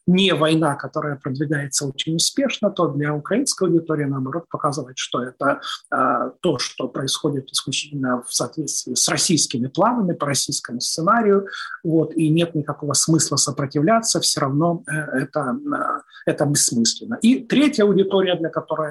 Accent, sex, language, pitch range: native, male, Ukrainian, 140-170 Hz